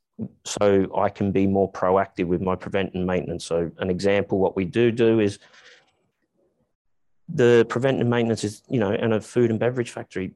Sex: male